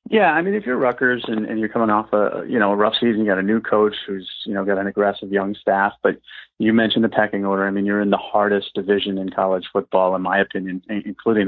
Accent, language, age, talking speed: American, English, 30-49, 260 wpm